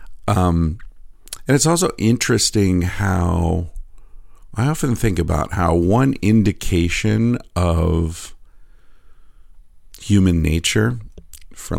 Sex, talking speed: male, 85 wpm